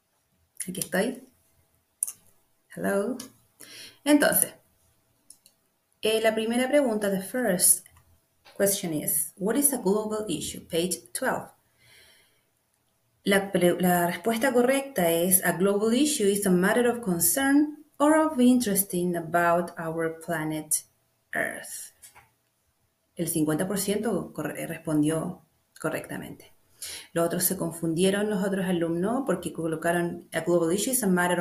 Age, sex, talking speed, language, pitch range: 30-49, female, 115 wpm, Spanish, 170-230 Hz